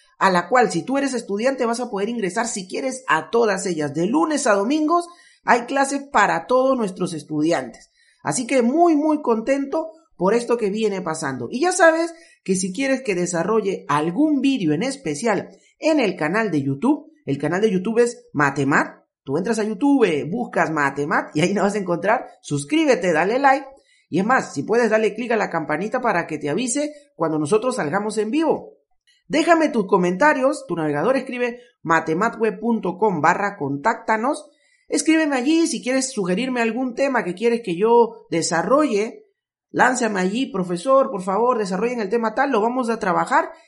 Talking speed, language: 175 wpm, Spanish